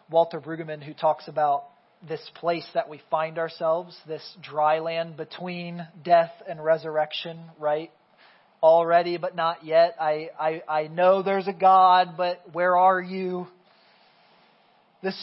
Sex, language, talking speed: male, English, 135 wpm